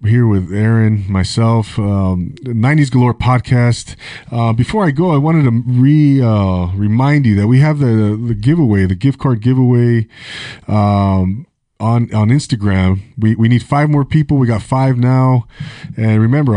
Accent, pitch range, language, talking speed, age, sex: American, 105-130 Hz, English, 165 wpm, 30-49, male